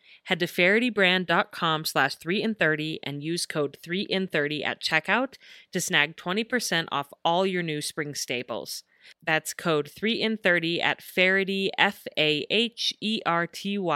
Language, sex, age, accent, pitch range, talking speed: English, female, 30-49, American, 150-195 Hz, 100 wpm